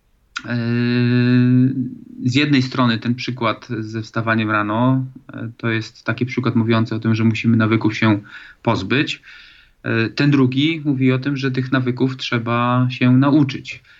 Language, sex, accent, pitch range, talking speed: Polish, male, native, 115-135 Hz, 135 wpm